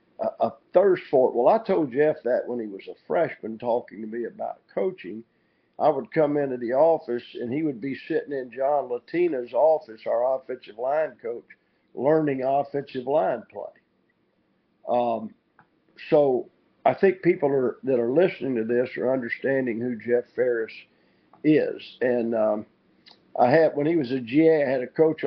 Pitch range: 120-155 Hz